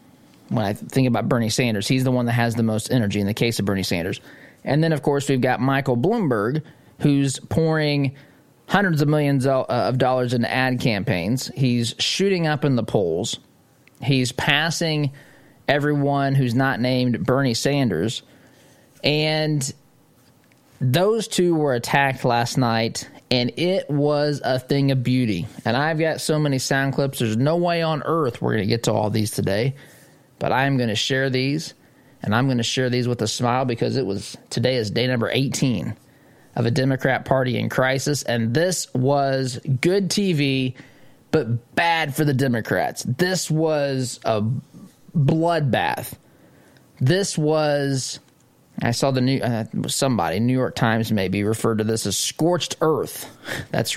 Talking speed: 170 wpm